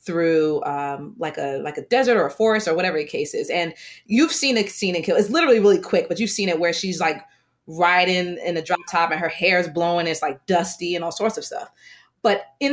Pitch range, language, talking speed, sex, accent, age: 170-225 Hz, English, 260 wpm, female, American, 20-39